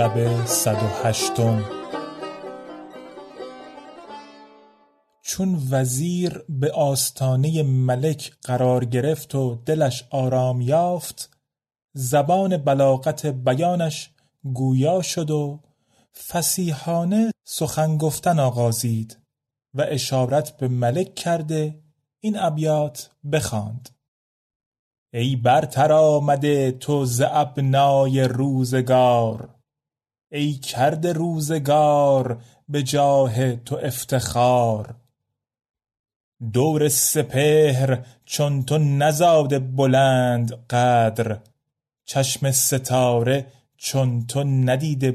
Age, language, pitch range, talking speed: 30-49, Persian, 120-145 Hz, 70 wpm